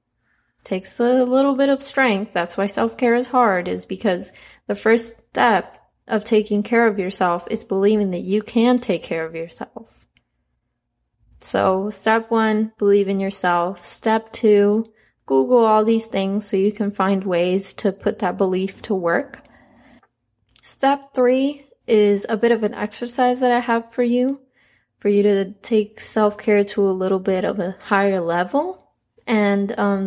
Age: 20-39